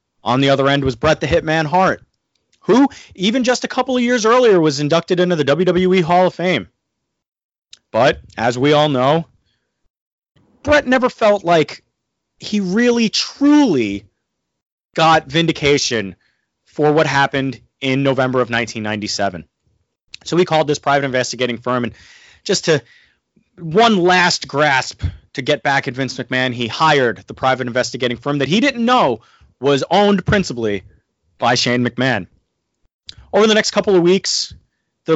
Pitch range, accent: 130-180 Hz, American